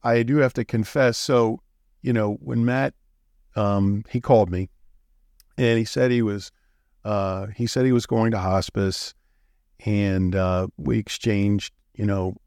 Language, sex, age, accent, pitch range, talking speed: English, male, 50-69, American, 95-120 Hz, 160 wpm